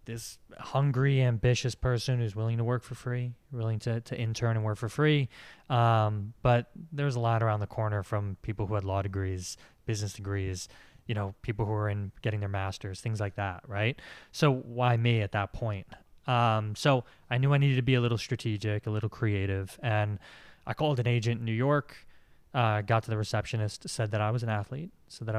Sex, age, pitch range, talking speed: male, 20-39, 105-125 Hz, 210 wpm